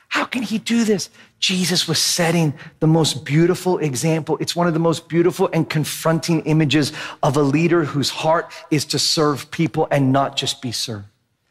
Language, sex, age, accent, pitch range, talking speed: English, male, 40-59, American, 165-220 Hz, 185 wpm